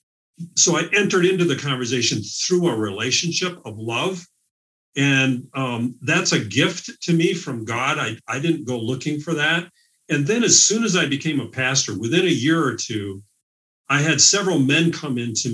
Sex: male